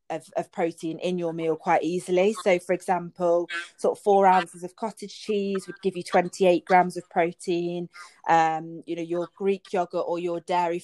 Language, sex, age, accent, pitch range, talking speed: English, female, 30-49, British, 170-195 Hz, 190 wpm